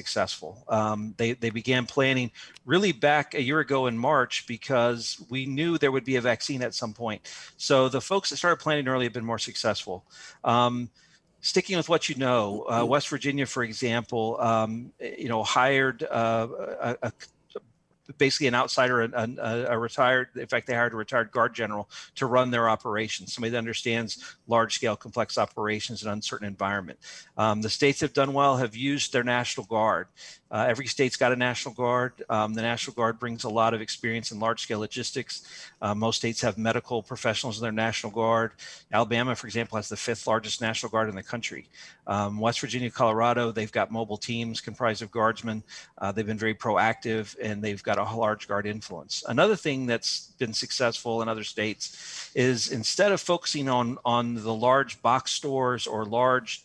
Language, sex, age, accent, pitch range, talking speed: English, male, 40-59, American, 110-130 Hz, 185 wpm